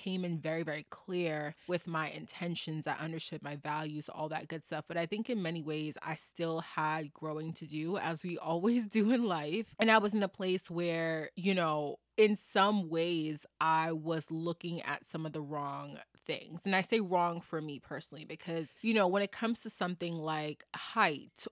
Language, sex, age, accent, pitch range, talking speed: English, female, 20-39, American, 155-195 Hz, 200 wpm